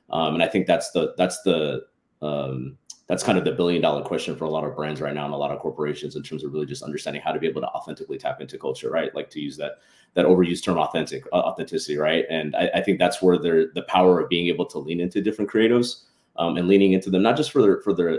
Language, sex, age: English, male, 30-49